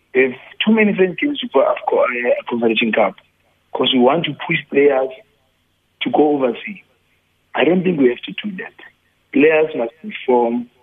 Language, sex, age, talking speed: English, male, 50-69, 160 wpm